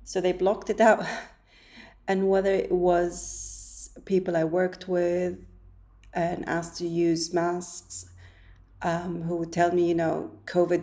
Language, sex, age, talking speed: English, female, 30-49, 145 wpm